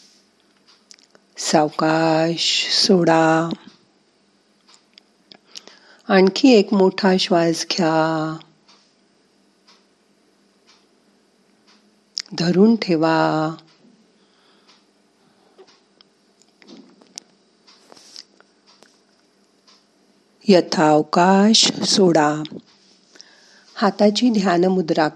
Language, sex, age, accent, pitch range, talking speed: Marathi, female, 50-69, native, 160-220 Hz, 30 wpm